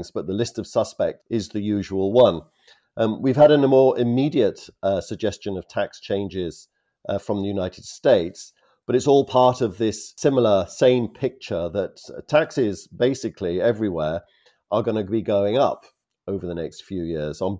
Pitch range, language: 90-115 Hz, English